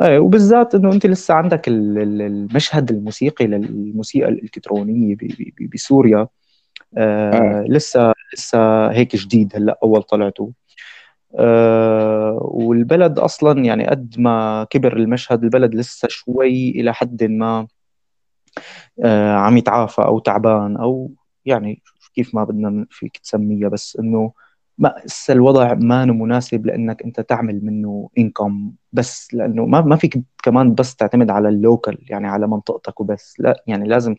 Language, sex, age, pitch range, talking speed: Arabic, male, 20-39, 105-125 Hz, 125 wpm